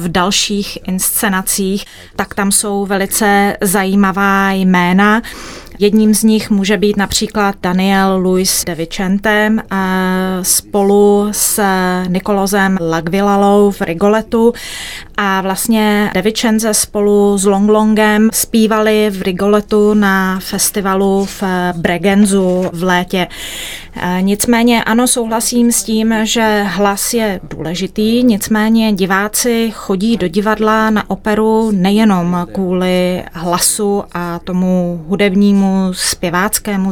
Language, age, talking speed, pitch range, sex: Czech, 20-39, 100 wpm, 190-215 Hz, female